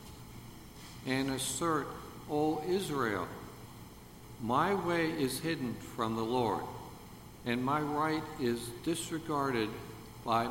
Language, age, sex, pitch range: English, 60-79, male, 120-155 Hz